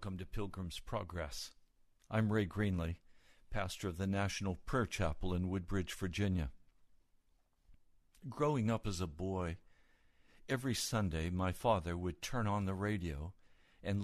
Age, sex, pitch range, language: 60-79, male, 90-120 Hz, English